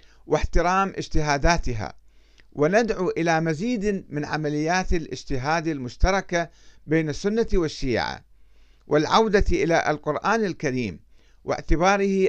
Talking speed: 85 wpm